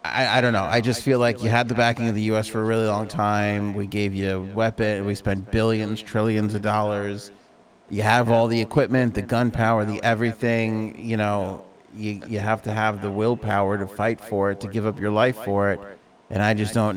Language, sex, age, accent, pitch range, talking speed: English, male, 30-49, American, 105-130 Hz, 225 wpm